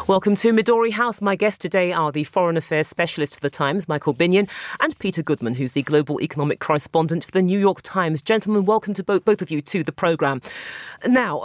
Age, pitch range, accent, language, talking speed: 40-59, 165-230 Hz, British, English, 215 wpm